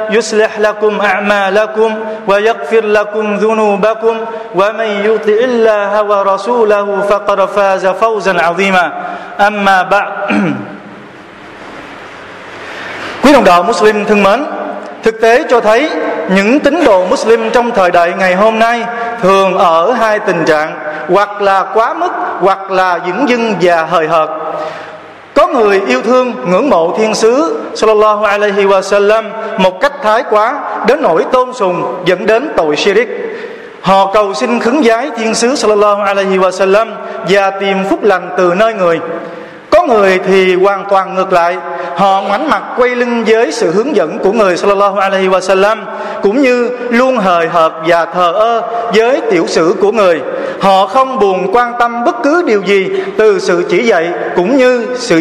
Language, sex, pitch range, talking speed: Vietnamese, male, 190-230 Hz, 135 wpm